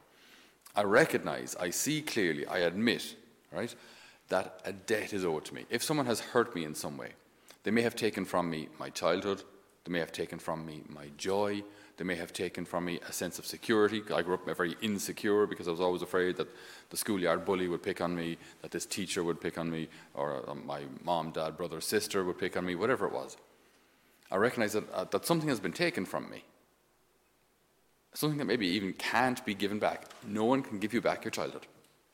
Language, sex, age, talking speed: English, male, 30-49, 210 wpm